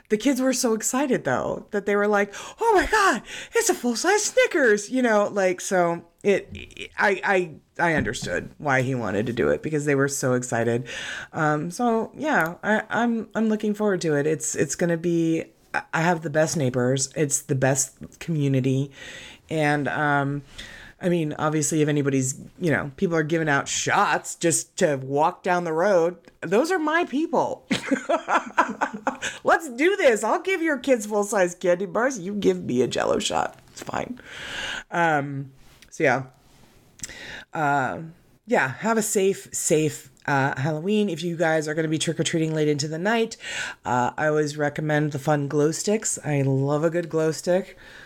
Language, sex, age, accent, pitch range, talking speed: English, female, 30-49, American, 145-210 Hz, 180 wpm